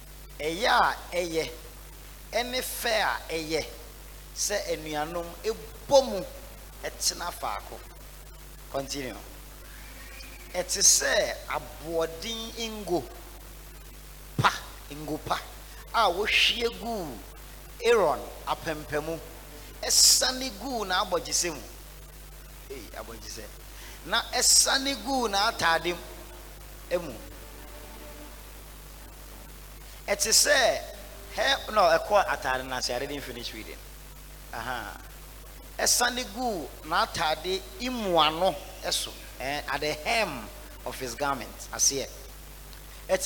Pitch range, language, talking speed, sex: 150-235 Hz, English, 95 wpm, male